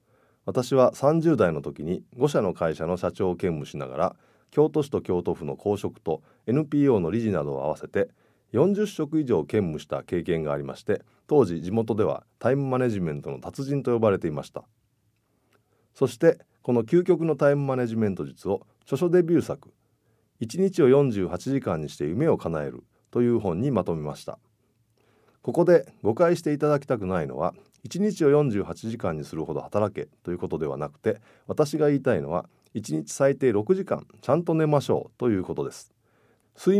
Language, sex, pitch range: Japanese, male, 105-160 Hz